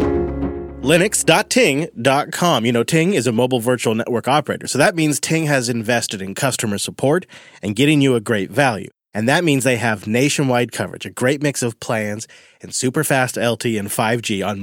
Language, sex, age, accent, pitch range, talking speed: English, male, 30-49, American, 115-150 Hz, 180 wpm